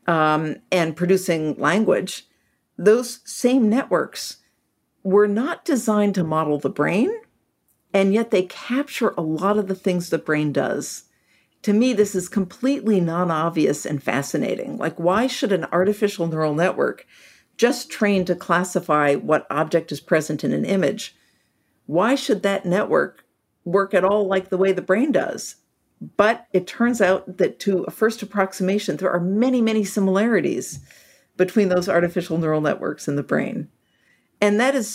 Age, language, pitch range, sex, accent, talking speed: 50-69, English, 170-230 Hz, female, American, 155 wpm